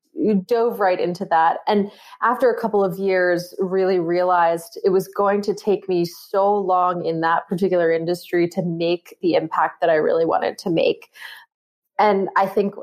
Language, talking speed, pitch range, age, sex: English, 180 wpm, 175-200 Hz, 20-39, female